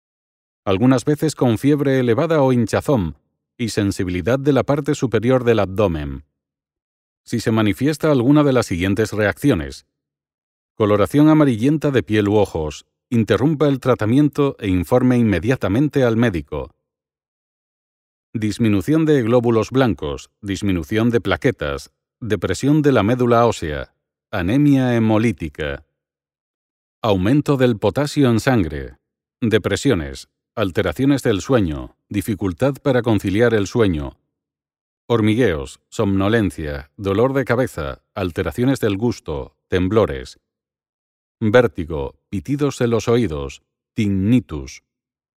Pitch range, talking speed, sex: 95-130 Hz, 105 wpm, male